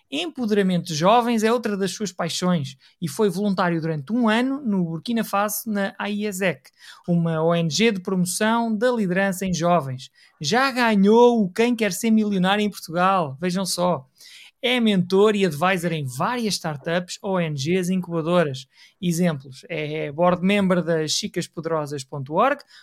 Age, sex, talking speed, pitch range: 20-39, male, 140 wpm, 175-225 Hz